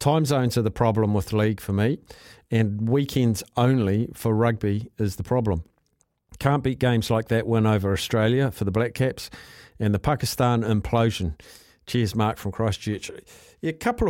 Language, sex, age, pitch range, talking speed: English, male, 50-69, 105-130 Hz, 165 wpm